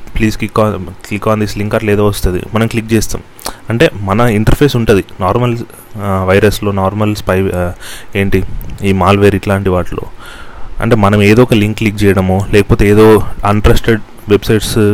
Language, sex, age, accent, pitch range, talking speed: Telugu, male, 30-49, native, 100-120 Hz, 145 wpm